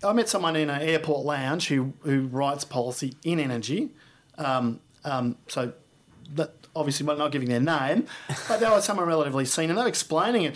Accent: Australian